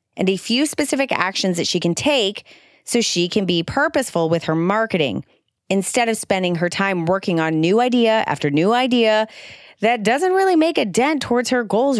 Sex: female